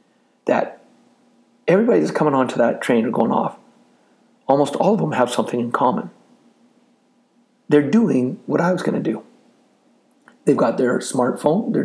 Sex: male